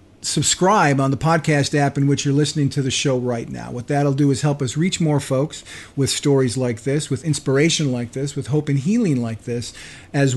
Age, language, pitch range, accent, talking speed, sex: 50-69, English, 125-155 Hz, American, 220 wpm, male